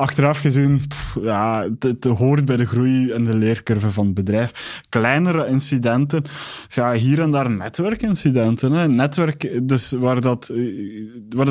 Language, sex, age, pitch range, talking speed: Dutch, male, 20-39, 115-135 Hz, 145 wpm